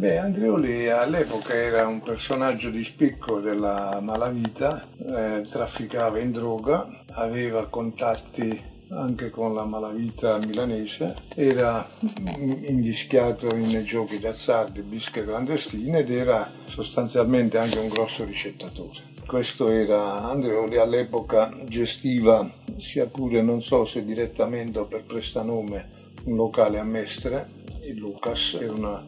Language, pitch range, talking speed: Italian, 110-125 Hz, 115 wpm